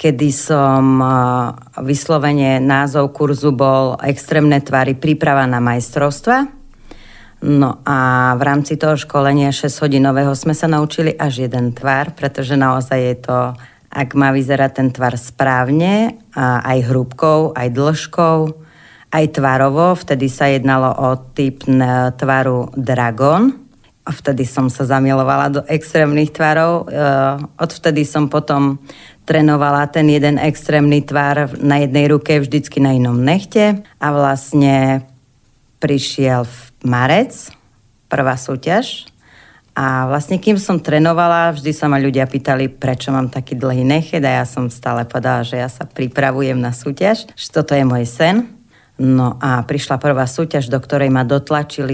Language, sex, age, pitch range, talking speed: Slovak, female, 30-49, 130-150 Hz, 135 wpm